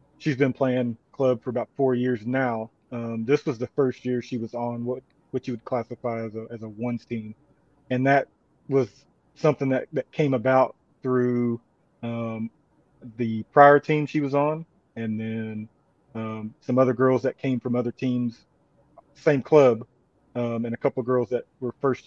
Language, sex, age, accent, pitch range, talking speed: English, male, 30-49, American, 115-135 Hz, 180 wpm